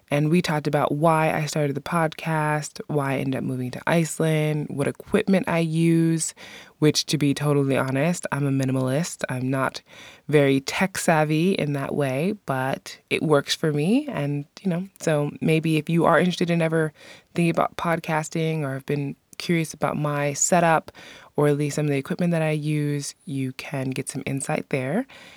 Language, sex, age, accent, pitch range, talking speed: English, female, 20-39, American, 140-165 Hz, 185 wpm